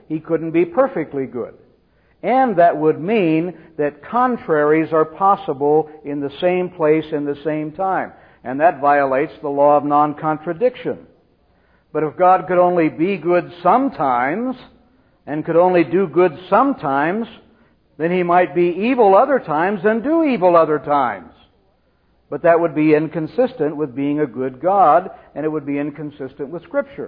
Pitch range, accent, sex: 150-195 Hz, American, male